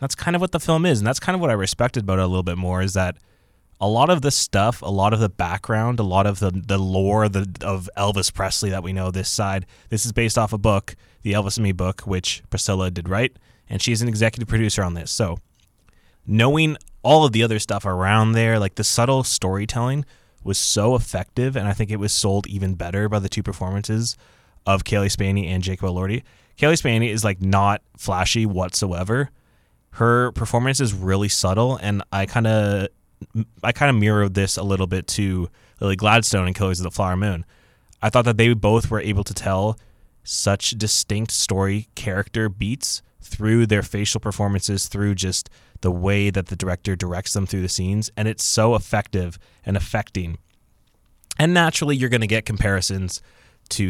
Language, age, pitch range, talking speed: English, 20-39, 95-115 Hz, 200 wpm